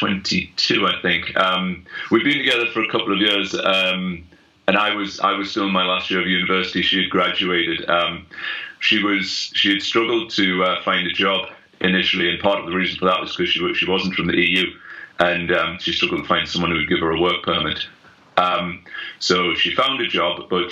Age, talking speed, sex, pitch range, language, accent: 30-49, 225 wpm, male, 90-100 Hz, English, British